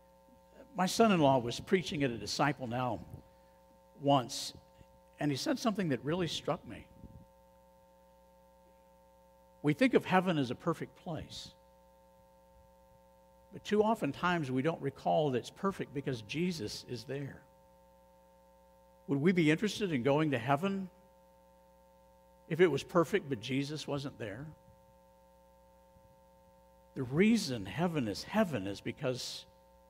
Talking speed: 125 wpm